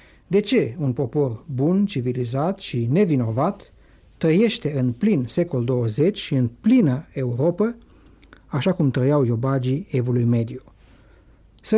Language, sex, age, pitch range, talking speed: Romanian, male, 60-79, 125-180 Hz, 120 wpm